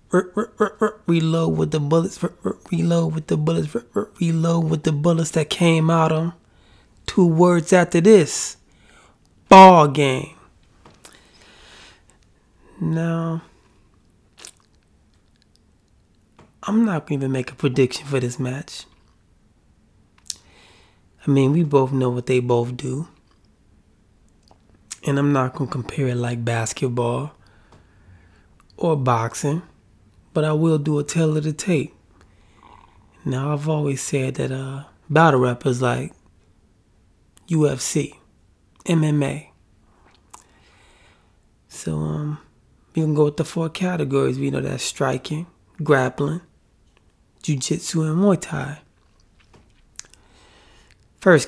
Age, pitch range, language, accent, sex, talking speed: 20-39, 100-160 Hz, English, American, male, 110 wpm